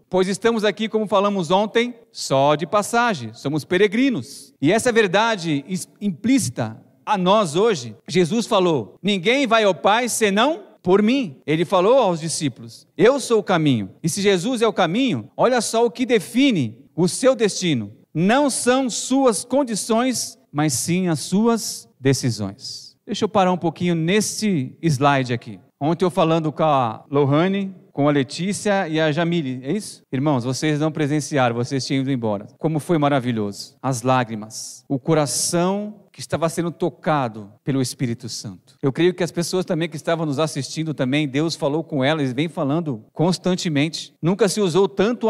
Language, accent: Portuguese, Brazilian